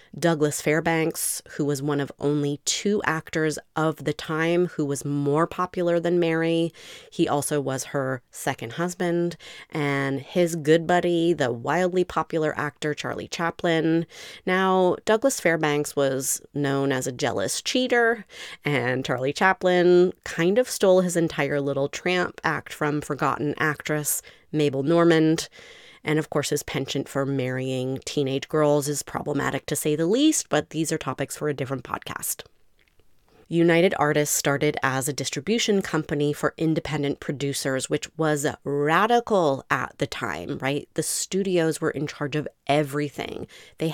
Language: English